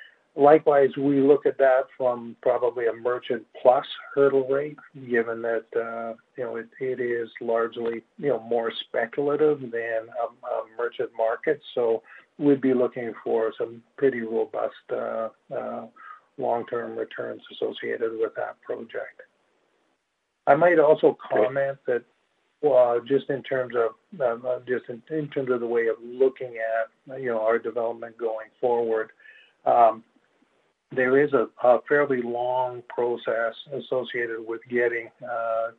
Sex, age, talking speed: male, 50-69, 140 wpm